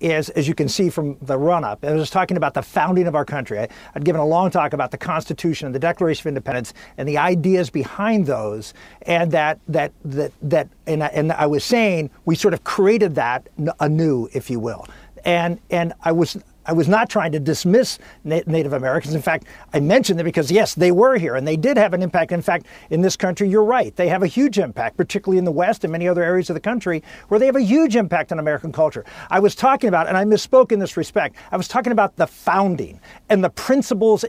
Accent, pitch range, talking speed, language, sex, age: American, 160-210 Hz, 235 wpm, English, male, 50-69